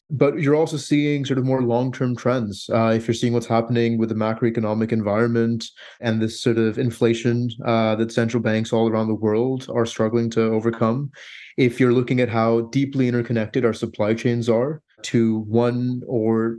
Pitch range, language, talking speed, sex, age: 115-130 Hz, English, 180 wpm, male, 30-49